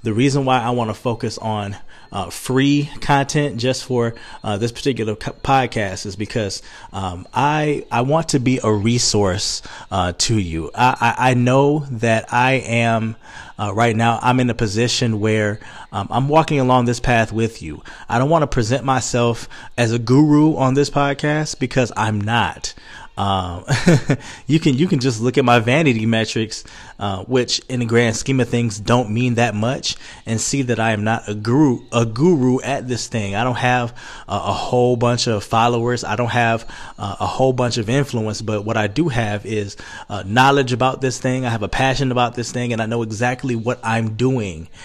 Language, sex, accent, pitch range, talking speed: English, male, American, 110-130 Hz, 195 wpm